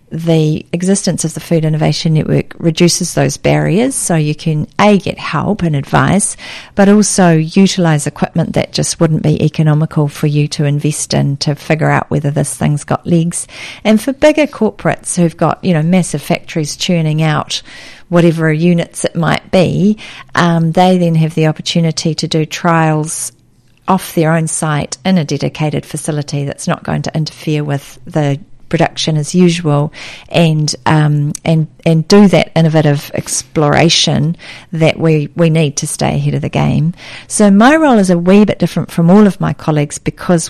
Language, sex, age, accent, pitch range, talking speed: English, female, 40-59, Australian, 150-170 Hz, 170 wpm